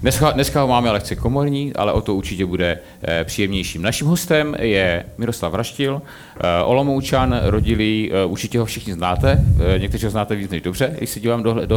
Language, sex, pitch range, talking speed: Czech, male, 90-120 Hz, 170 wpm